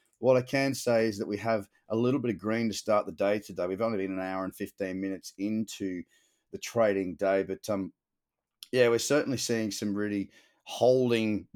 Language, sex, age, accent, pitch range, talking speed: English, male, 30-49, Australian, 100-125 Hz, 210 wpm